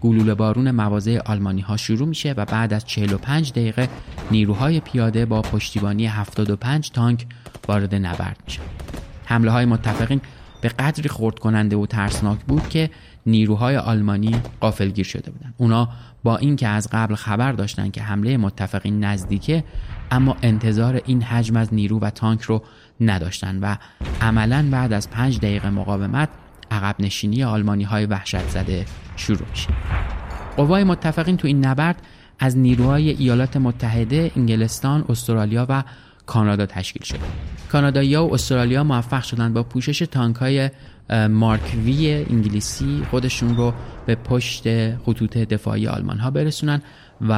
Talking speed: 135 wpm